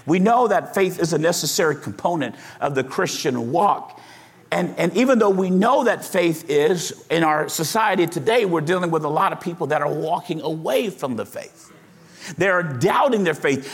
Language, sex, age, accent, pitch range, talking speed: English, male, 50-69, American, 170-245 Hz, 190 wpm